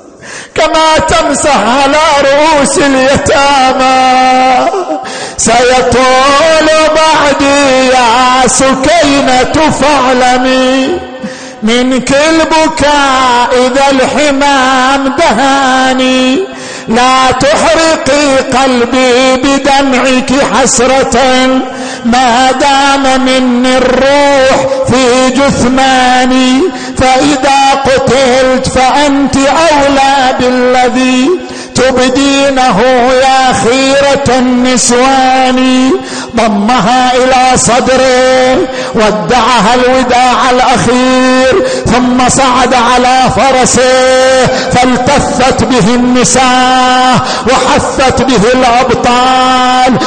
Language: Arabic